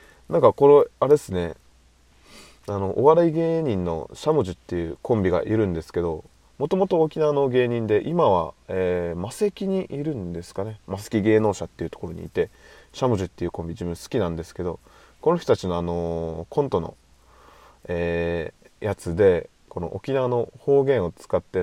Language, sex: Japanese, male